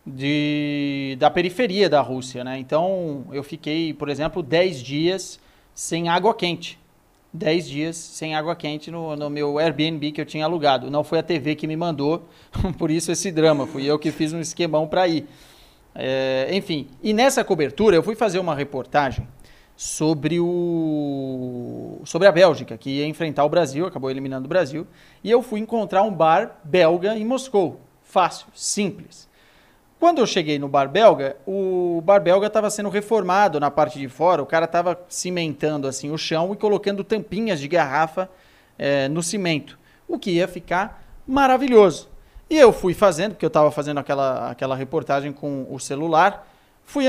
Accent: Brazilian